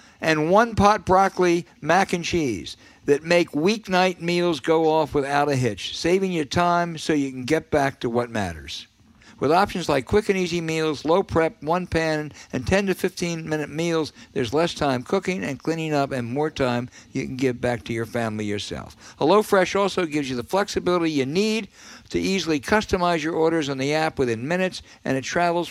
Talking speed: 185 wpm